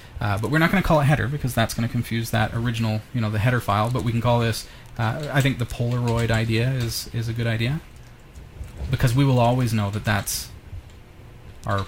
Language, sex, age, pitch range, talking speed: English, male, 30-49, 105-125 Hz, 225 wpm